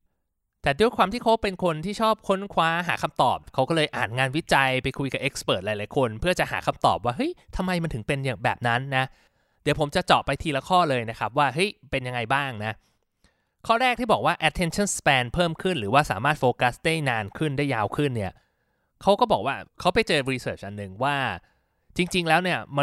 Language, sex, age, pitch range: Thai, male, 20-39, 125-175 Hz